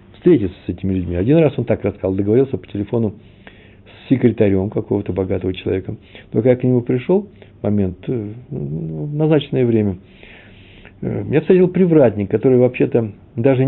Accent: native